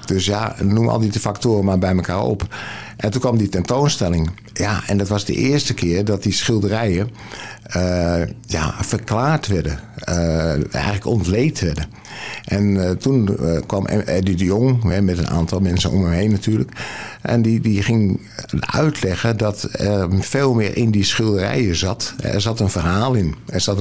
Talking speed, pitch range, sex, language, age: 170 wpm, 95-115 Hz, male, Dutch, 60-79